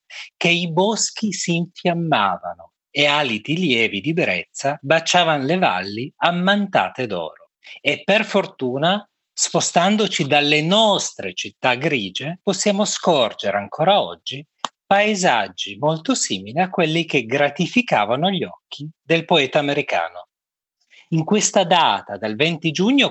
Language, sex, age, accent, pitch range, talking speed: Italian, male, 40-59, native, 145-205 Hz, 115 wpm